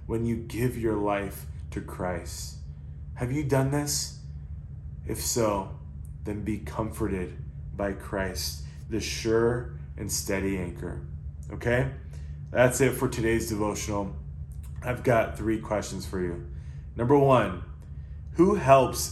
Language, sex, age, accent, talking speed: English, male, 20-39, American, 120 wpm